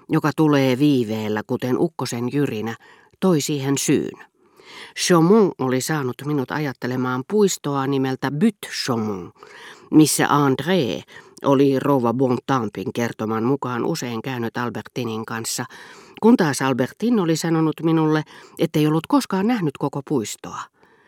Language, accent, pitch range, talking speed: Finnish, native, 130-175 Hz, 115 wpm